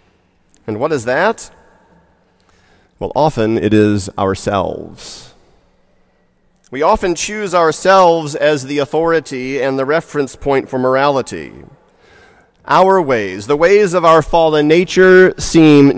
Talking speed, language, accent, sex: 115 wpm, English, American, male